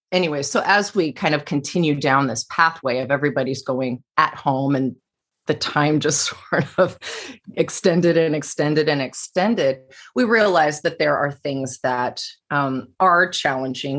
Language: English